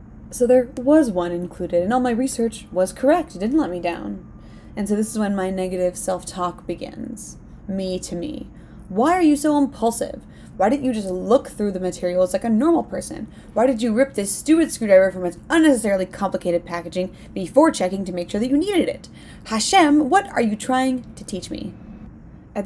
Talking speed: 200 wpm